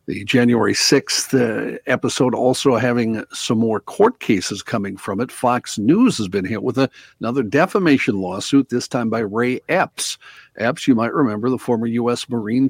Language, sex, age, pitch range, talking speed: English, male, 50-69, 110-135 Hz, 165 wpm